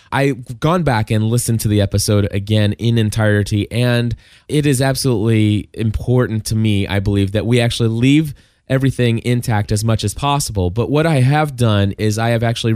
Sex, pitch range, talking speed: male, 100-120 Hz, 185 wpm